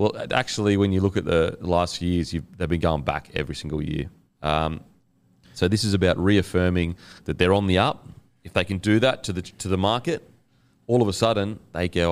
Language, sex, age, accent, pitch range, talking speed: English, male, 30-49, Australian, 85-100 Hz, 225 wpm